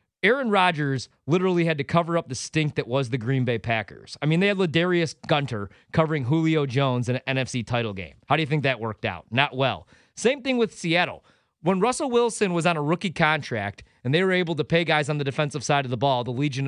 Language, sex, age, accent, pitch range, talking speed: English, male, 30-49, American, 125-170 Hz, 235 wpm